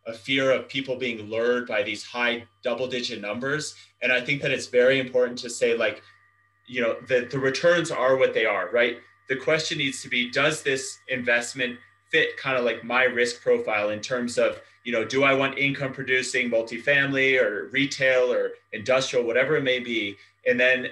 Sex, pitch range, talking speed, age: male, 115-135 Hz, 190 wpm, 30-49